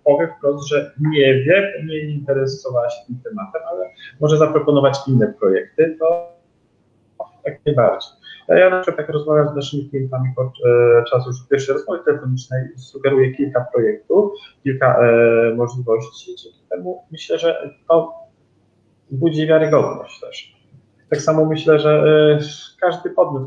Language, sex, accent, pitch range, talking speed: Polish, male, native, 125-155 Hz, 140 wpm